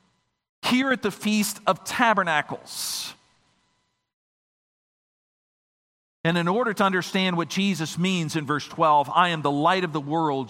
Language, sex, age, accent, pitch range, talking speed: English, male, 50-69, American, 170-225 Hz, 135 wpm